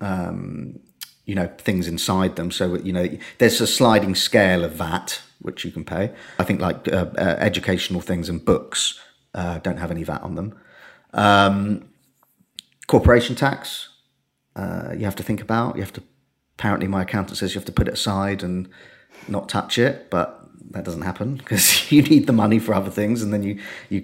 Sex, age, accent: male, 30-49, British